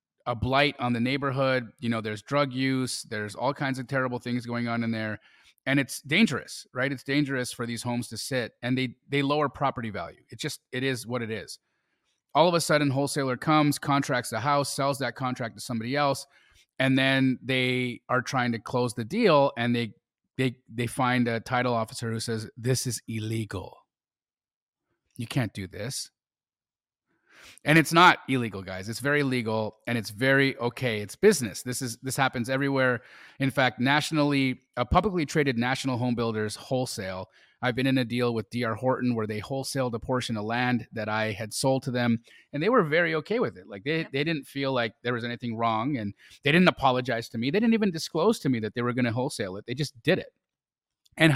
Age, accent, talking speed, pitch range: 30-49, American, 205 wpm, 115-140 Hz